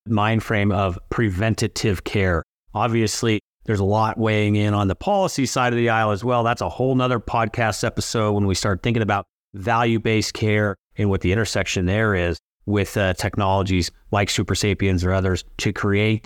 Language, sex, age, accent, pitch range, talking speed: English, male, 30-49, American, 95-115 Hz, 185 wpm